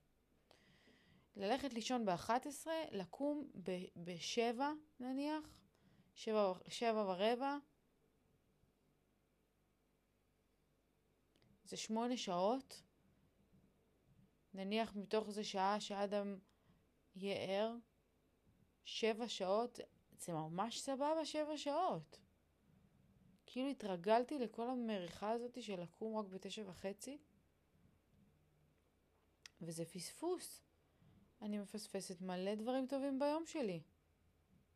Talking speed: 80 wpm